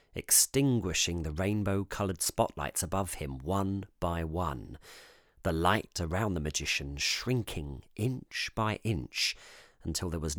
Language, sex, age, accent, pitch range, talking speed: English, male, 40-59, British, 85-130 Hz, 120 wpm